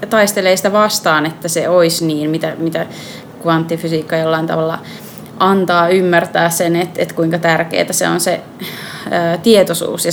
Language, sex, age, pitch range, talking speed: Finnish, female, 20-39, 165-205 Hz, 165 wpm